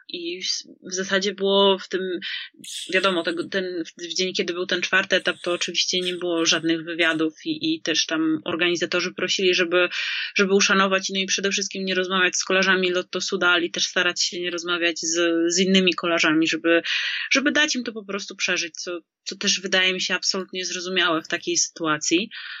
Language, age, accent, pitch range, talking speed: Polish, 30-49, native, 180-210 Hz, 185 wpm